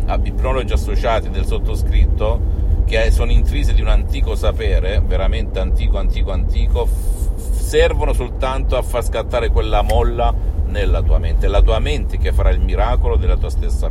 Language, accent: Italian, native